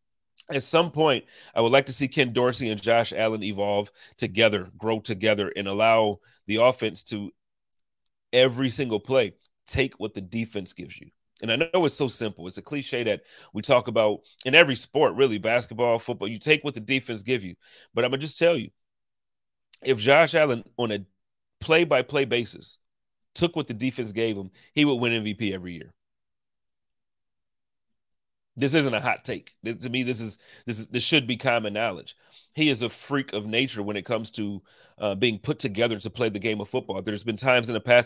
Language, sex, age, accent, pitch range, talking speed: English, male, 30-49, American, 105-130 Hz, 195 wpm